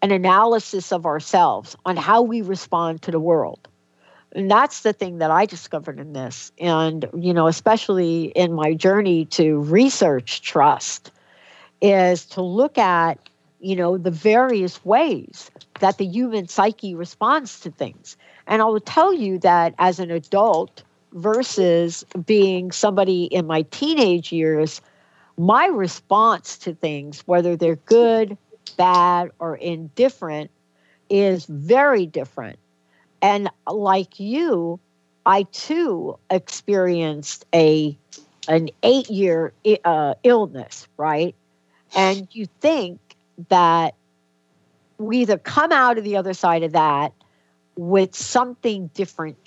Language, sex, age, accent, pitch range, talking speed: English, female, 60-79, American, 160-205 Hz, 125 wpm